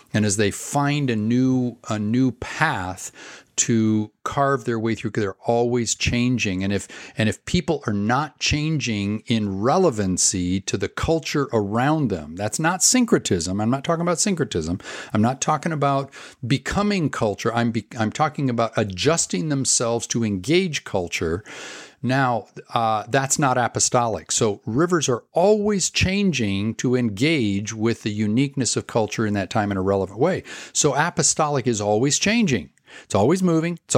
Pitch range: 105-145 Hz